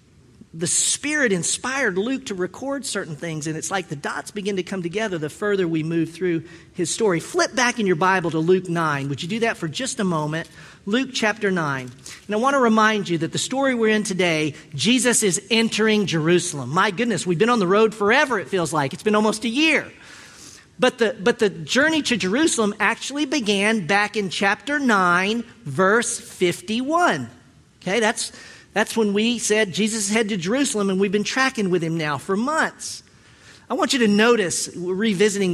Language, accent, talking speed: English, American, 195 wpm